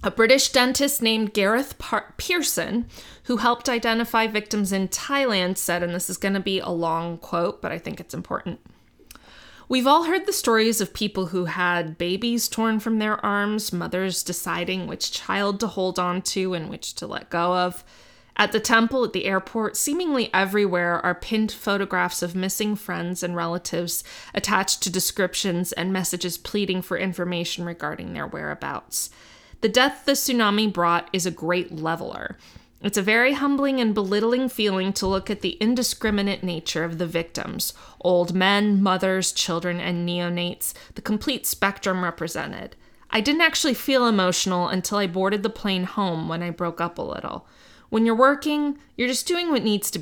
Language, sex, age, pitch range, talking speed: English, female, 20-39, 180-225 Hz, 170 wpm